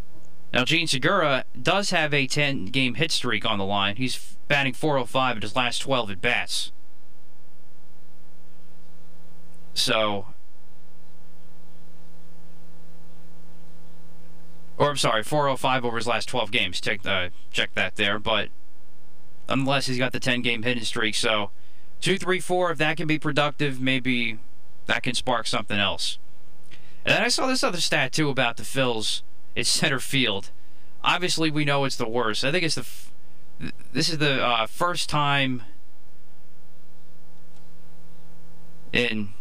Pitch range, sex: 115-165 Hz, male